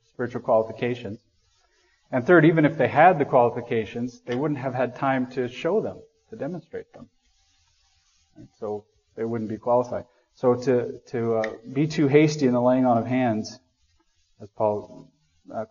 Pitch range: 110-135 Hz